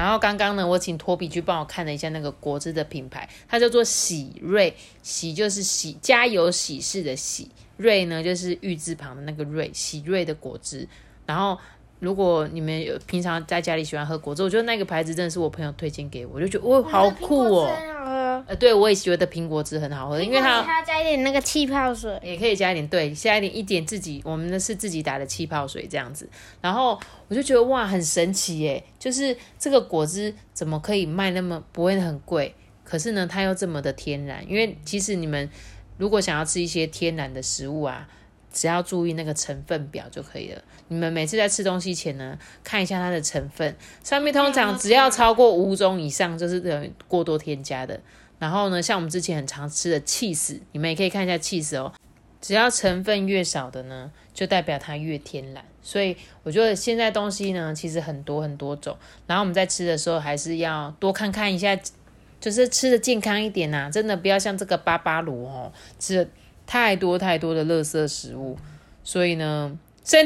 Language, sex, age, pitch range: Chinese, female, 20-39, 155-205 Hz